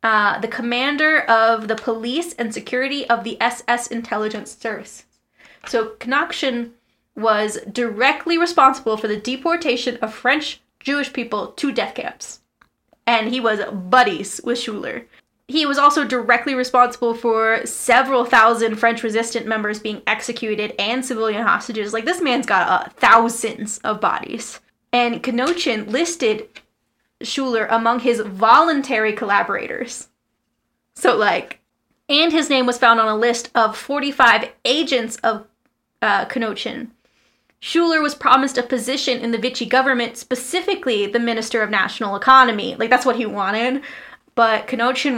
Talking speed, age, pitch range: 140 wpm, 10-29, 225-260 Hz